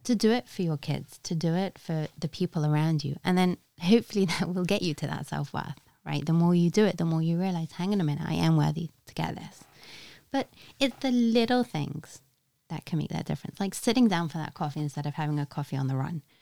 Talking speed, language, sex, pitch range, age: 250 wpm, English, female, 150-230 Hz, 30-49